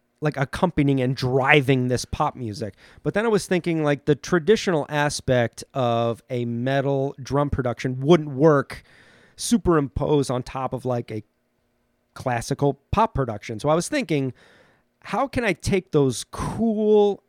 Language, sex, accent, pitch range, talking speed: English, male, American, 120-155 Hz, 145 wpm